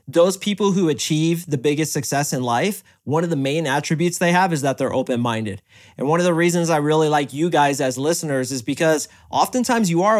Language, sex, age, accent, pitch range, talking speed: English, male, 30-49, American, 135-165 Hz, 220 wpm